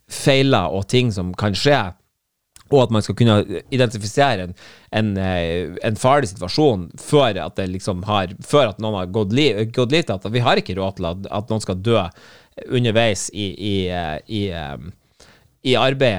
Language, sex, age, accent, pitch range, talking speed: English, male, 30-49, Norwegian, 95-135 Hz, 165 wpm